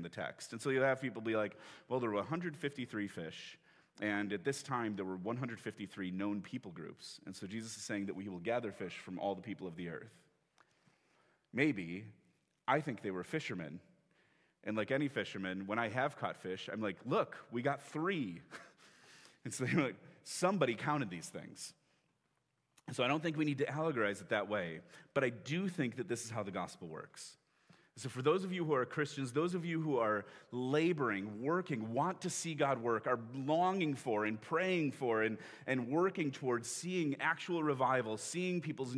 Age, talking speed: 30-49, 195 wpm